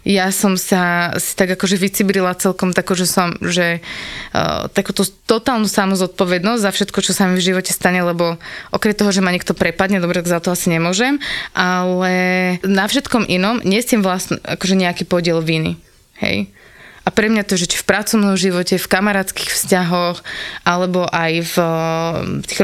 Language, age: Slovak, 20-39